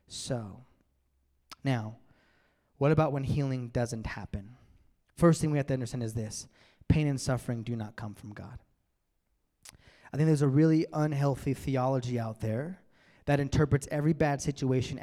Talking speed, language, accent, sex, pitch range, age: 150 wpm, English, American, male, 115-145 Hz, 20-39